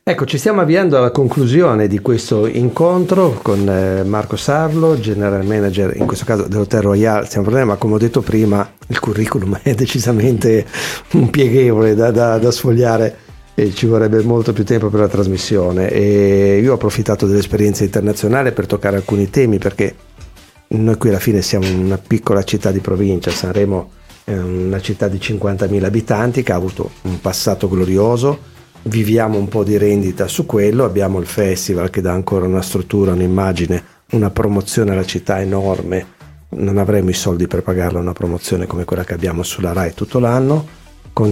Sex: male